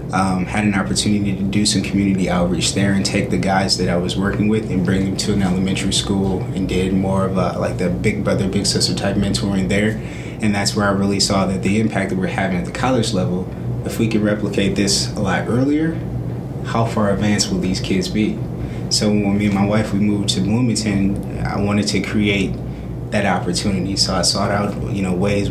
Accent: American